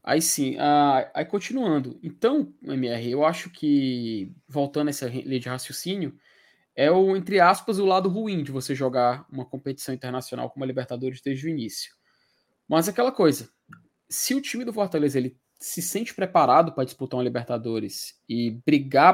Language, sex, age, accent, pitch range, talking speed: Portuguese, male, 20-39, Brazilian, 130-195 Hz, 165 wpm